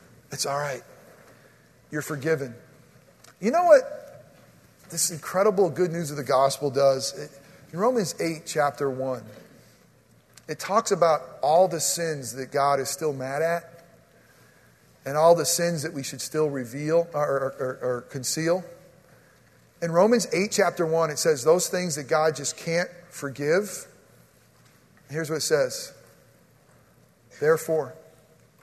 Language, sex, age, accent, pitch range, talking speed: English, male, 40-59, American, 145-220 Hz, 140 wpm